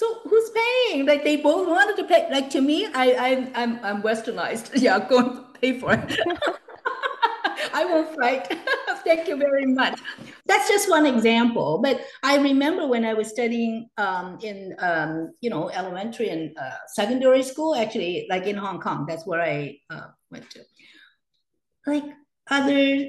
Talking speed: 170 wpm